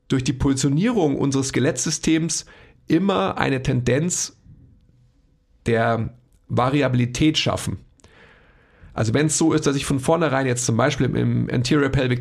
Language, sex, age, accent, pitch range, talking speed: German, male, 40-59, German, 125-155 Hz, 130 wpm